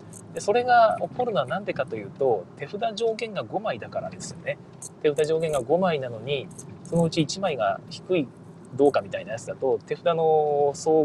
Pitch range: 145-195 Hz